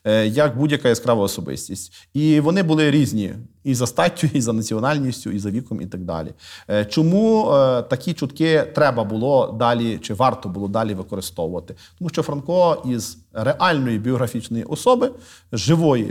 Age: 40-59